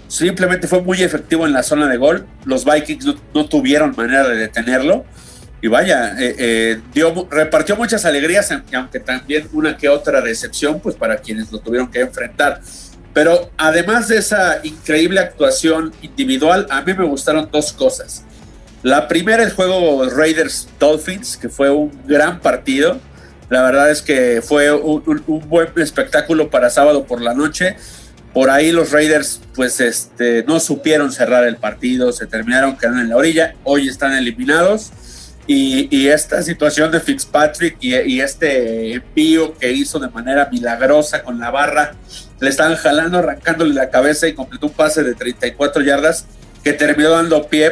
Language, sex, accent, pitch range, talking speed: Spanish, male, Mexican, 130-165 Hz, 165 wpm